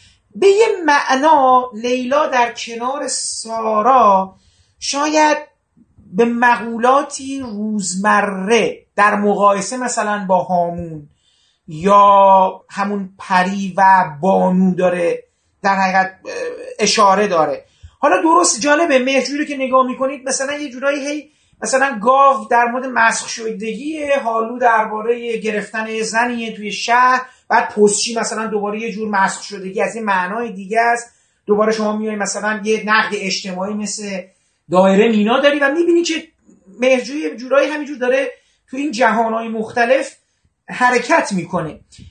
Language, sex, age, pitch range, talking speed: Persian, male, 40-59, 200-280 Hz, 130 wpm